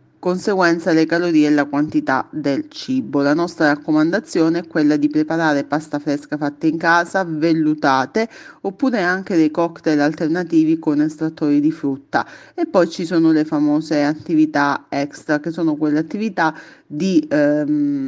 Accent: native